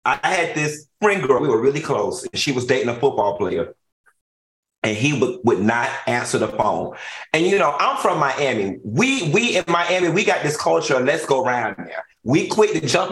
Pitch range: 130-190 Hz